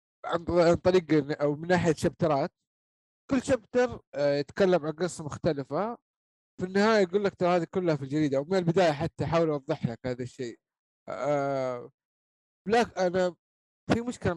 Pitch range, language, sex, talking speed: 140-190 Hz, Arabic, male, 145 wpm